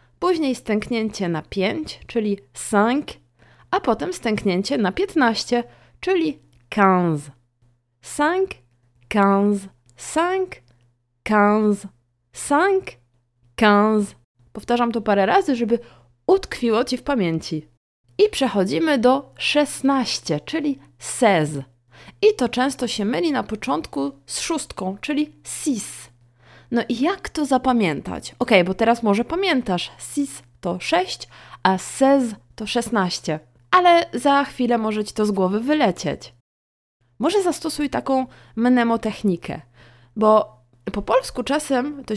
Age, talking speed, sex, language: 20-39, 110 wpm, female, Polish